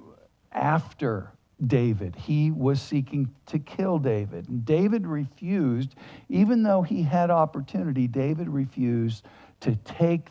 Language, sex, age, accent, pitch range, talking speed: English, male, 60-79, American, 120-150 Hz, 115 wpm